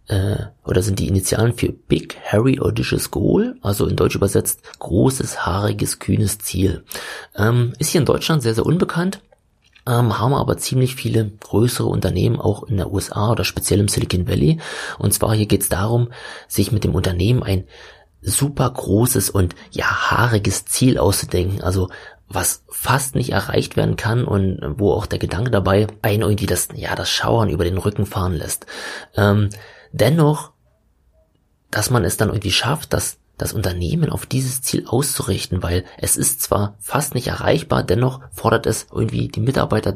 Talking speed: 165 wpm